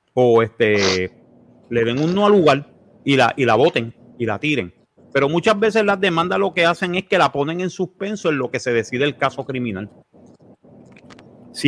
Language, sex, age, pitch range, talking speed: Spanish, male, 40-59, 130-195 Hz, 200 wpm